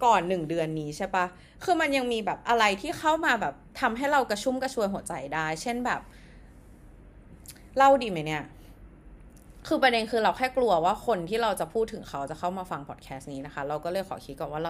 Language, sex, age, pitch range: Thai, female, 20-39, 160-255 Hz